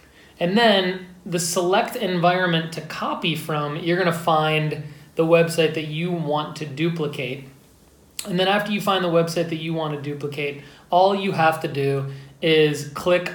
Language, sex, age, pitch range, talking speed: English, male, 20-39, 155-180 Hz, 170 wpm